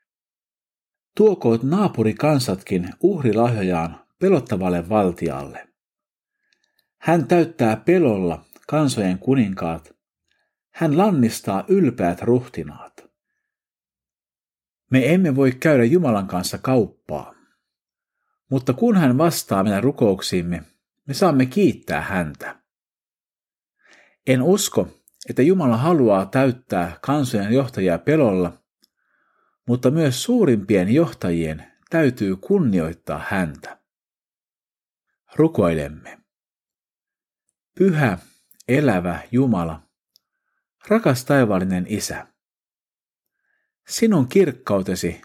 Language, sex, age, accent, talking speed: Finnish, male, 50-69, native, 75 wpm